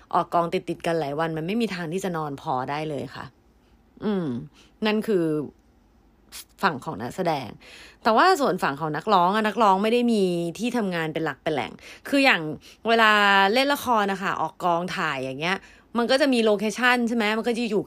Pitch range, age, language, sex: 170-225 Hz, 30-49, Thai, female